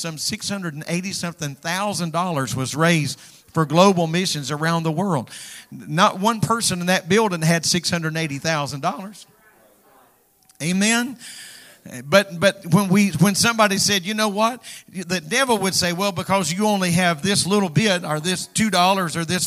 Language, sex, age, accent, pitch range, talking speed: English, male, 50-69, American, 165-200 Hz, 175 wpm